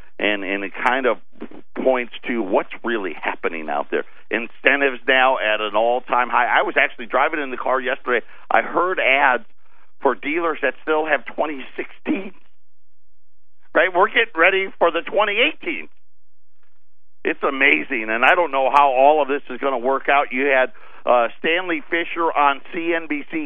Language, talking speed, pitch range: English, 165 wpm, 130-165 Hz